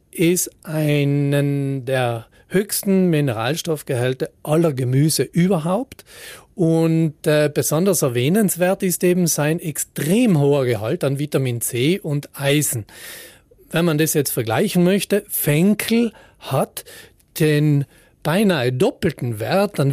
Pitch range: 130-165 Hz